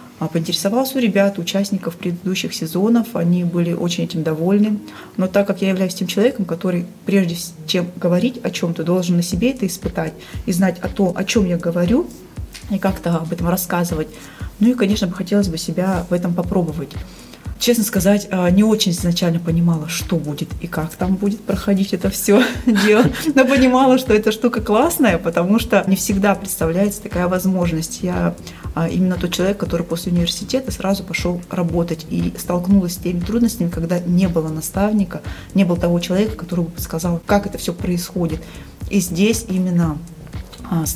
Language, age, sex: Russian, 20-39, female